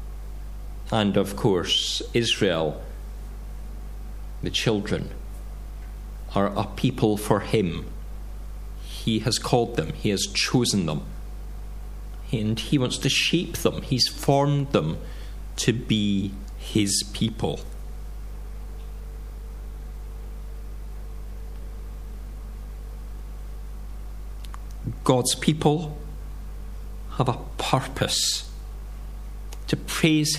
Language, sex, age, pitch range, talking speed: English, male, 50-69, 95-130 Hz, 75 wpm